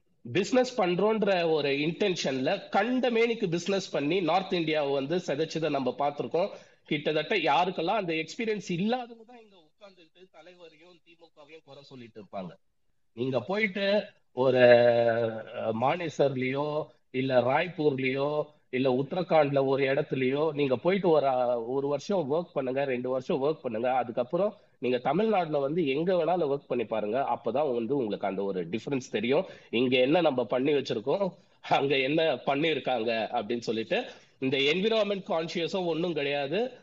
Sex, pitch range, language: male, 135-190 Hz, Tamil